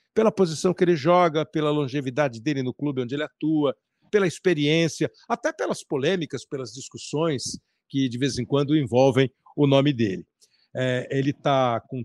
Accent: Brazilian